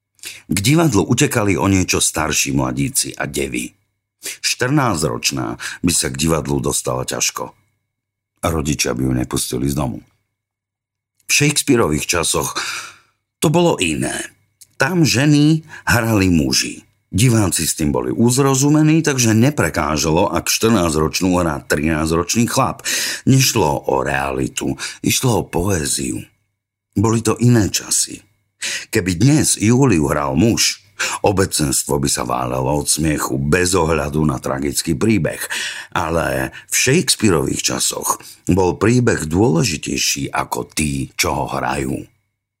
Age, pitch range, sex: 50-69, 75-115 Hz, male